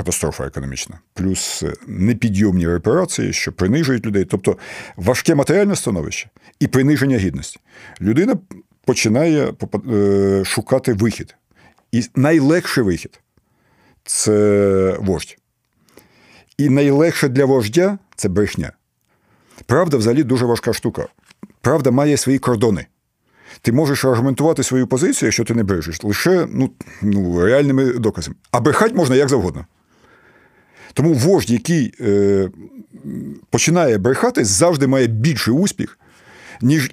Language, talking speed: Ukrainian, 115 wpm